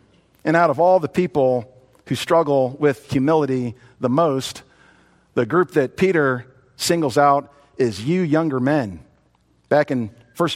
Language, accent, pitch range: English, American, 180-245 Hz